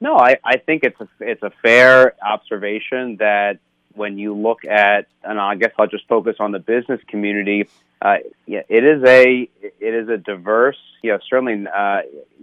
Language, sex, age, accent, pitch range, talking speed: English, male, 30-49, American, 105-130 Hz, 185 wpm